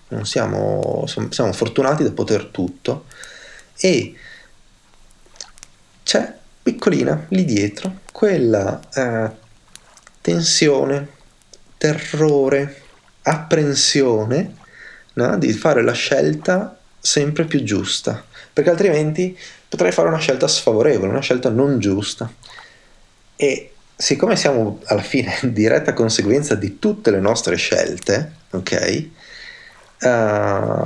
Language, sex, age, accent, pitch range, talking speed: Italian, male, 30-49, native, 105-140 Hz, 100 wpm